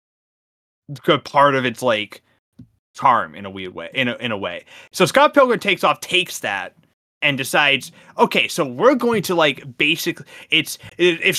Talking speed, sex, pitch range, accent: 175 wpm, male, 115-165 Hz, American